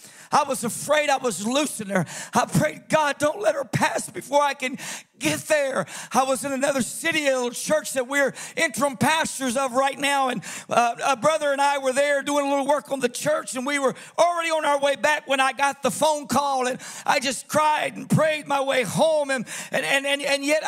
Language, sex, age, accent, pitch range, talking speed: English, male, 50-69, American, 265-320 Hz, 225 wpm